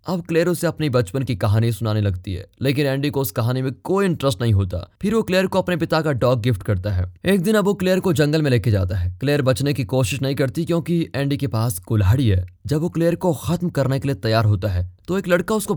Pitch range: 110-160 Hz